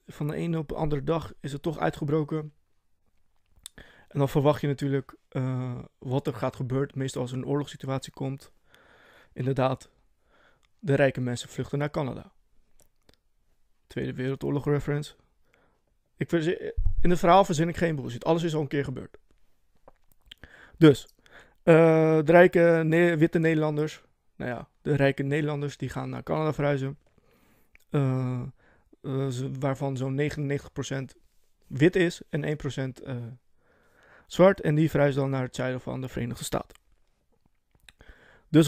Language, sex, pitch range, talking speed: Dutch, male, 130-155 Hz, 145 wpm